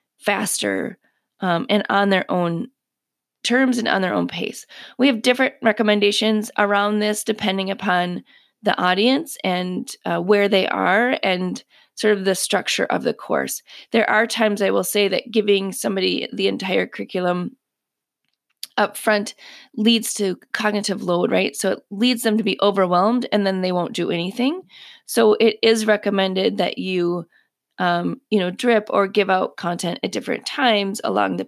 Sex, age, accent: female, 20-39, American